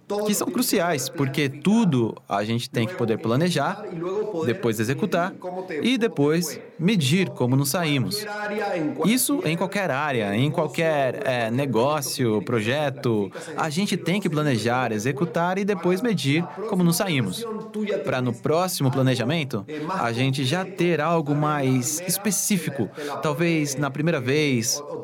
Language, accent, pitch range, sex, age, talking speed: English, Brazilian, 130-190 Hz, male, 20-39, 130 wpm